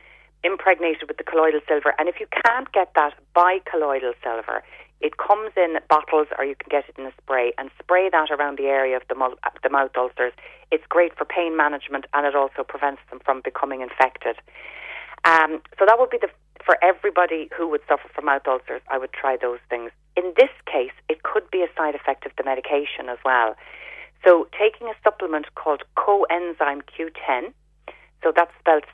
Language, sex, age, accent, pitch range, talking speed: English, female, 30-49, Irish, 135-170 Hz, 195 wpm